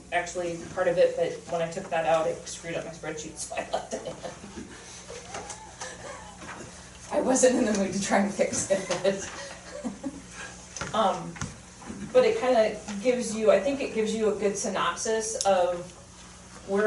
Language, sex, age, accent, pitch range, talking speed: English, female, 20-39, American, 175-205 Hz, 165 wpm